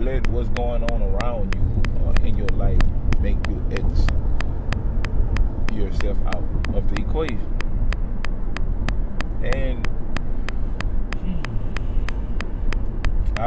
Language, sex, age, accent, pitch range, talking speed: English, male, 20-39, American, 95-105 Hz, 90 wpm